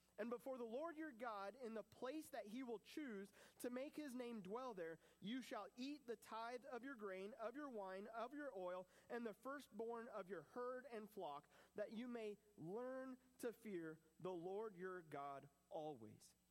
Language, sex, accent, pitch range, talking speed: English, male, American, 185-255 Hz, 190 wpm